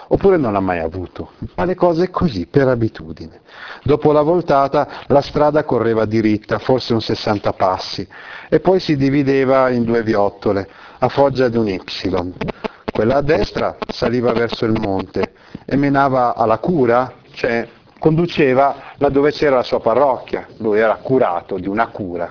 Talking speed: 155 wpm